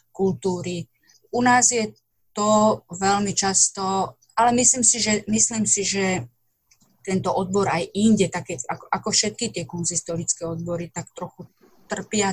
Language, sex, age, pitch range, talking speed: Slovak, female, 30-49, 170-215 Hz, 135 wpm